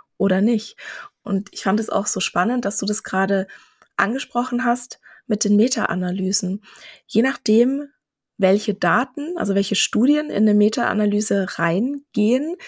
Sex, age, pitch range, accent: female, 20-39, 195-230 Hz, German